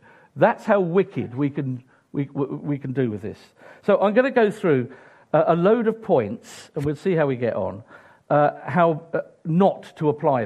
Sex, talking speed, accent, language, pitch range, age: male, 190 wpm, British, English, 125-190 Hz, 50-69